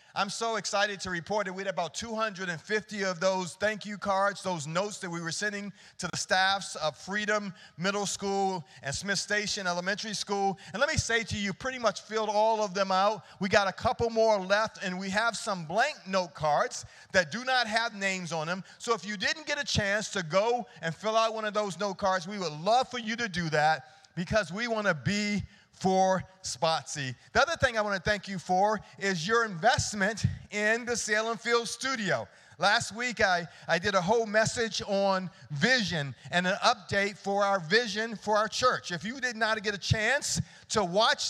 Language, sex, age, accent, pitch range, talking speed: English, male, 40-59, American, 185-220 Hz, 210 wpm